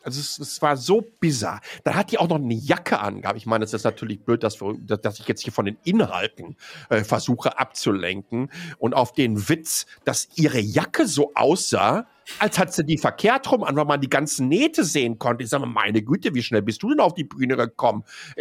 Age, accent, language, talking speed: 50-69, German, German, 220 wpm